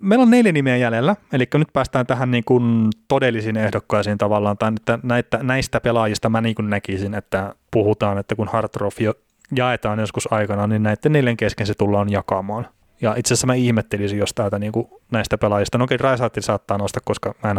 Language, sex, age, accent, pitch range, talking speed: Finnish, male, 30-49, native, 105-125 Hz, 185 wpm